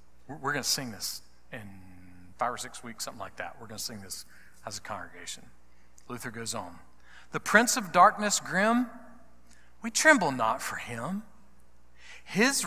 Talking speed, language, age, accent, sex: 165 wpm, English, 40-59, American, male